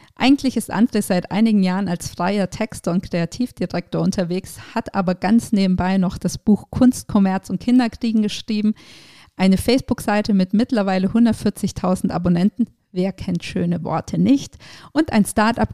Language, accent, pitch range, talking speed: German, German, 180-220 Hz, 150 wpm